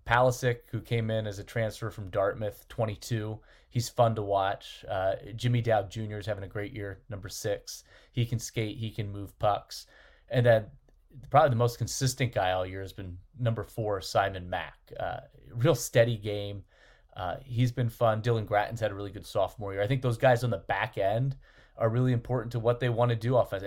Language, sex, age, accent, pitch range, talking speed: English, male, 30-49, American, 105-120 Hz, 205 wpm